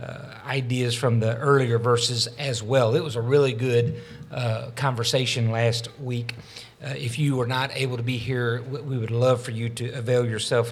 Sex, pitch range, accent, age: male, 115-140 Hz, American, 50-69